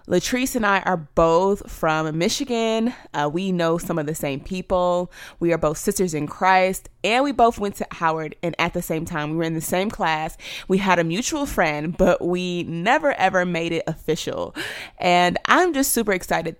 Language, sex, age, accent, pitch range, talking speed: English, female, 30-49, American, 165-210 Hz, 200 wpm